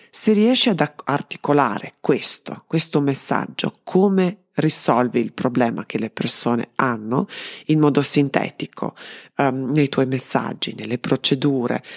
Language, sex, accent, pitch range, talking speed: Italian, female, native, 130-175 Hz, 120 wpm